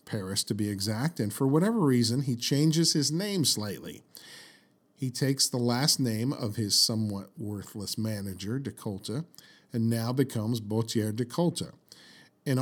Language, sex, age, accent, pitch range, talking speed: English, male, 50-69, American, 110-135 Hz, 150 wpm